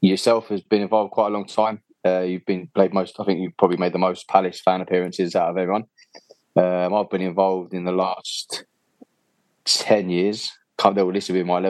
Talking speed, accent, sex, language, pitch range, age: 200 wpm, British, male, English, 90-100 Hz, 20-39